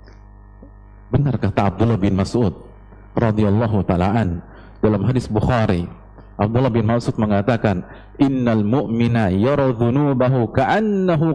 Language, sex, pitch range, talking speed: Indonesian, male, 100-125 Hz, 100 wpm